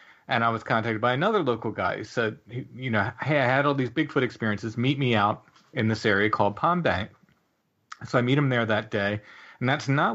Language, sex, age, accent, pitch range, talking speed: English, male, 40-59, American, 105-125 Hz, 225 wpm